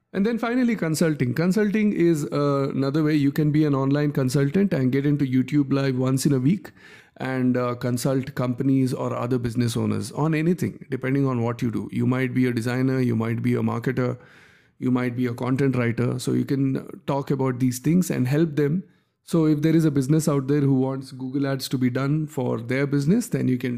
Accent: Indian